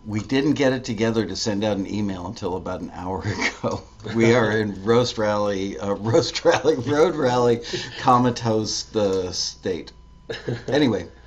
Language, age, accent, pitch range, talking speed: English, 50-69, American, 95-115 Hz, 155 wpm